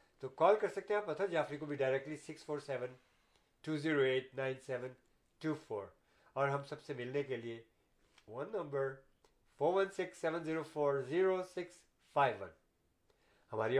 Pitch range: 130-180 Hz